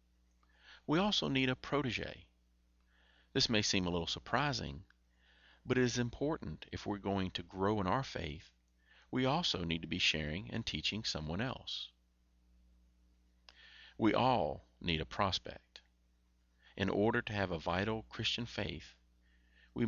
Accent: American